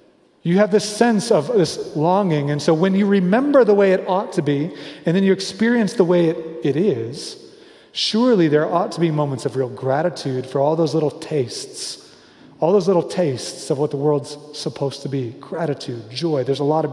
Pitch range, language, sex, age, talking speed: 135-170 Hz, English, male, 30-49, 205 wpm